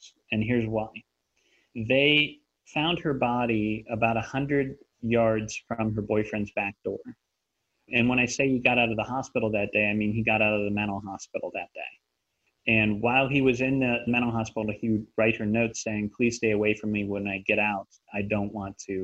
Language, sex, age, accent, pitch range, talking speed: English, male, 30-49, American, 110-130 Hz, 210 wpm